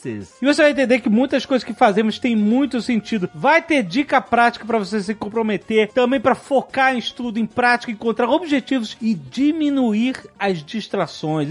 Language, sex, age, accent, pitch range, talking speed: Portuguese, male, 40-59, Brazilian, 220-275 Hz, 170 wpm